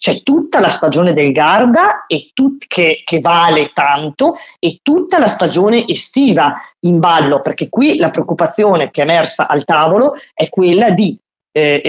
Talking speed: 150 wpm